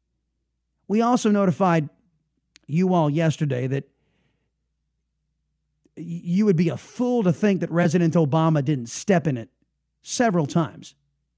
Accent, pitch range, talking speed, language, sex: American, 125-180 Hz, 120 wpm, English, male